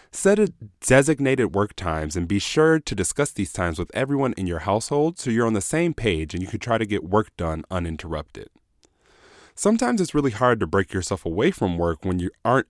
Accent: American